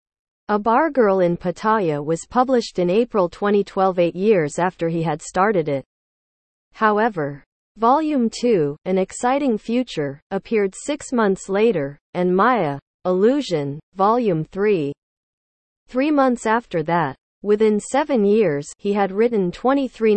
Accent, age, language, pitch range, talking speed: American, 40-59, English, 165-235 Hz, 130 wpm